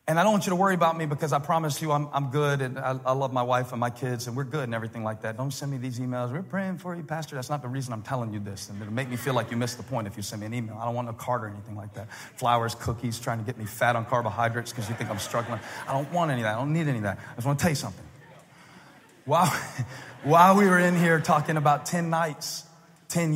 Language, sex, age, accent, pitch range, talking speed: English, male, 40-59, American, 125-165 Hz, 305 wpm